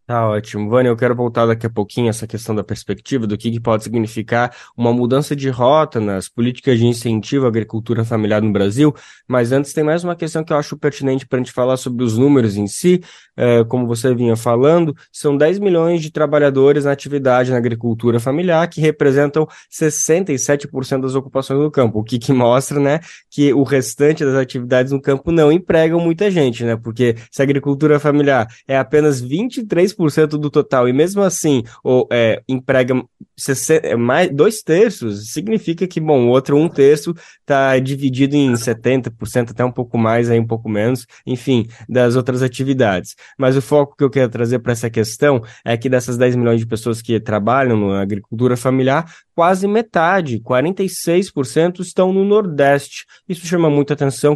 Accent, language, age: Brazilian, Portuguese, 20-39